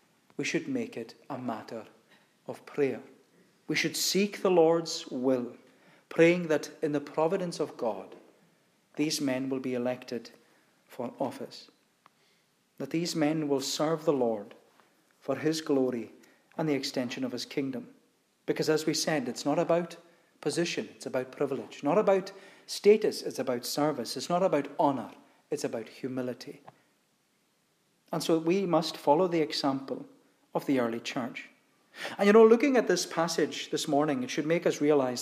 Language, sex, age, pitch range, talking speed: English, male, 40-59, 135-165 Hz, 160 wpm